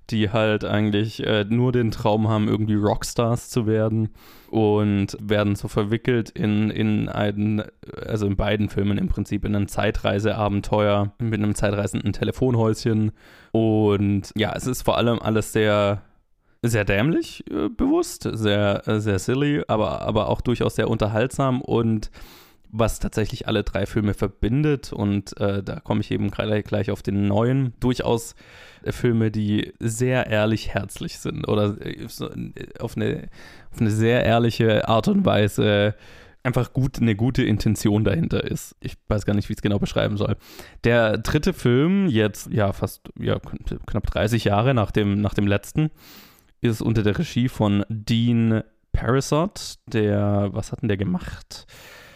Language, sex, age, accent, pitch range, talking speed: German, male, 20-39, German, 105-115 Hz, 155 wpm